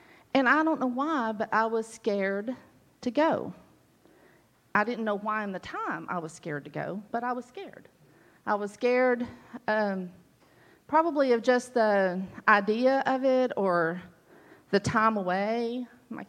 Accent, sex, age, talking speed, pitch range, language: American, female, 40-59, 160 wpm, 185-235 Hz, English